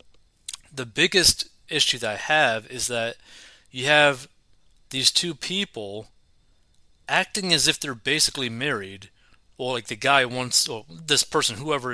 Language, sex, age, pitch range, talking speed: English, male, 30-49, 115-155 Hz, 145 wpm